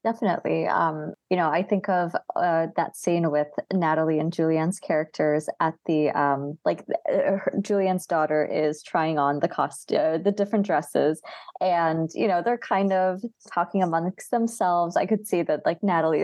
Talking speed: 165 wpm